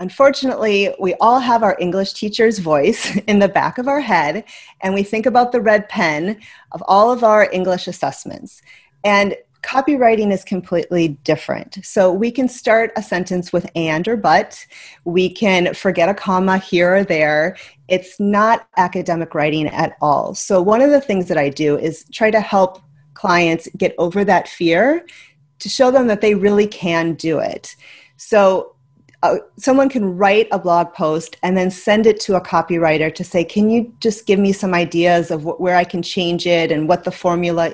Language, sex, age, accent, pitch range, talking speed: English, female, 30-49, American, 170-215 Hz, 185 wpm